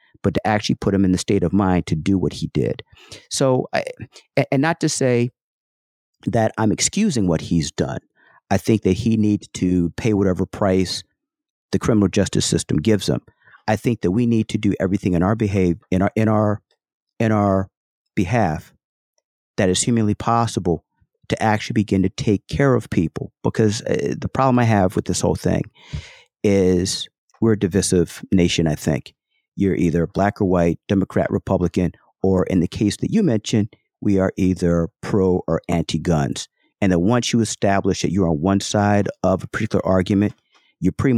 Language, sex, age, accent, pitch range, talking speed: English, male, 50-69, American, 90-110 Hz, 180 wpm